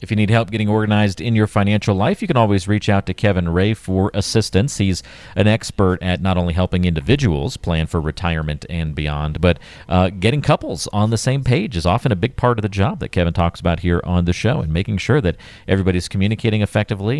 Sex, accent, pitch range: male, American, 85-110 Hz